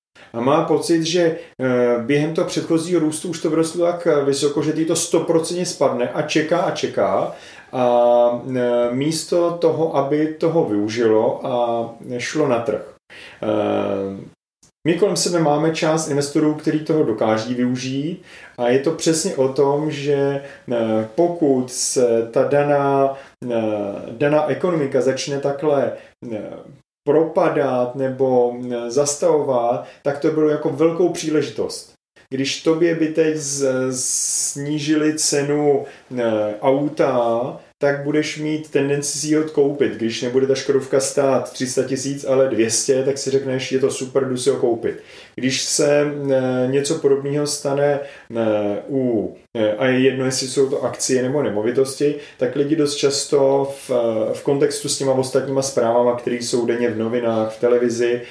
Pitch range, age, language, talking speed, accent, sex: 125-155 Hz, 30-49, Czech, 135 wpm, native, male